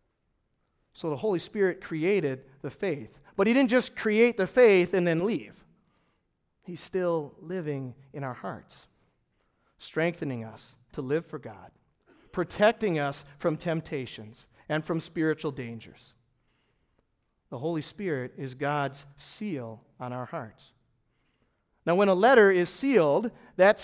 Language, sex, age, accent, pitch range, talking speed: English, male, 40-59, American, 135-190 Hz, 135 wpm